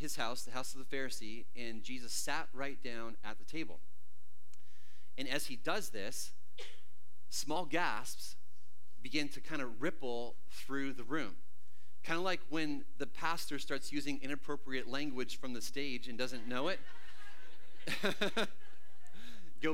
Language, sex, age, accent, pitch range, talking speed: English, male, 30-49, American, 95-150 Hz, 145 wpm